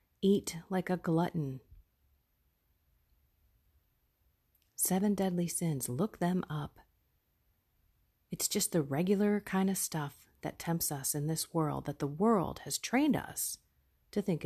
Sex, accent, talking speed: female, American, 130 wpm